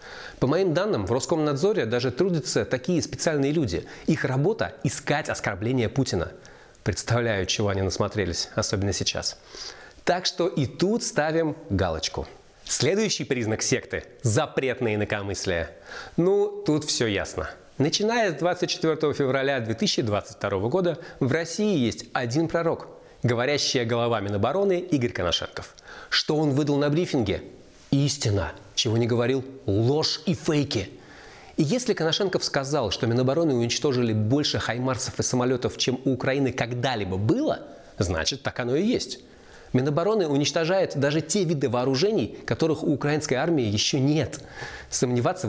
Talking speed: 135 wpm